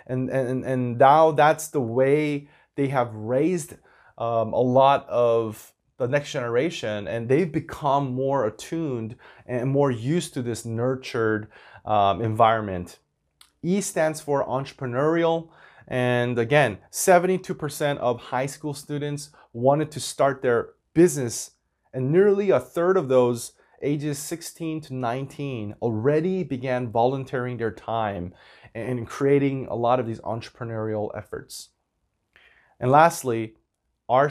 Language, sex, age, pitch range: Korean, male, 30-49, 115-150 Hz